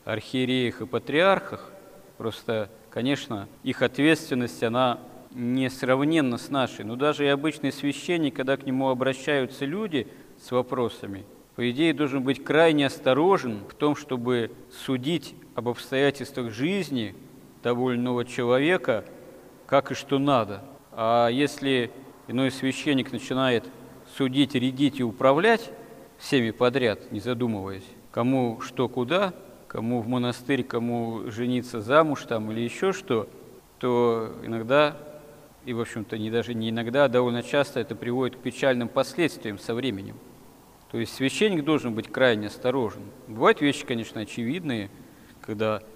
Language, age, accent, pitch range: Russian, 40-59, native, 115-140 Hz